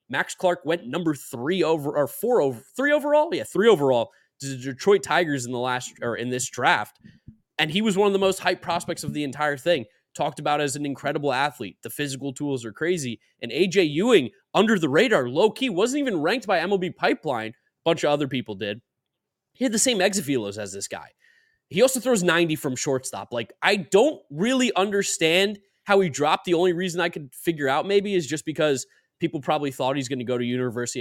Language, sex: English, male